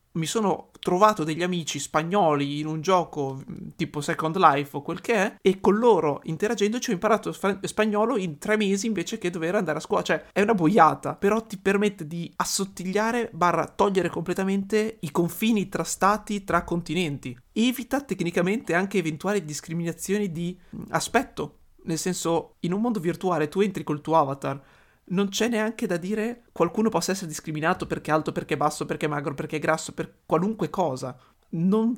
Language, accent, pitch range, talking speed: Italian, native, 155-200 Hz, 175 wpm